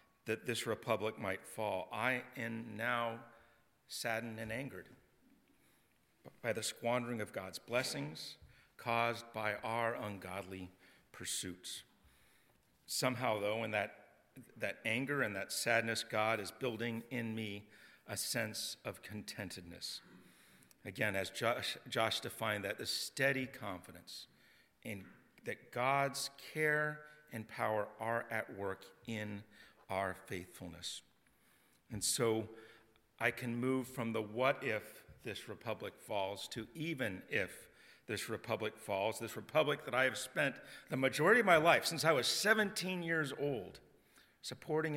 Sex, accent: male, American